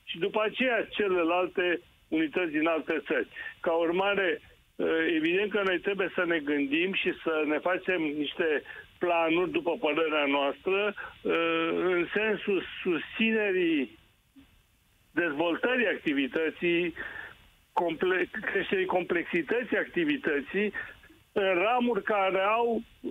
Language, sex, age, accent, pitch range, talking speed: Romanian, male, 60-79, native, 175-220 Hz, 100 wpm